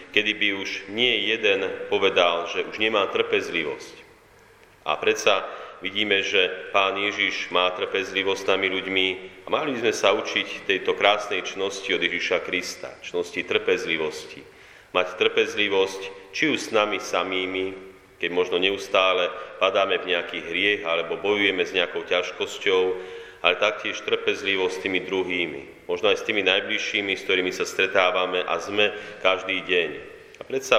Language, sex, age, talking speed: Slovak, male, 30-49, 145 wpm